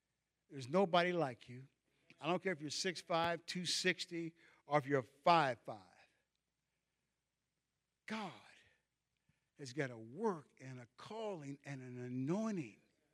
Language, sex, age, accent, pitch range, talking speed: English, male, 60-79, American, 145-195 Hz, 120 wpm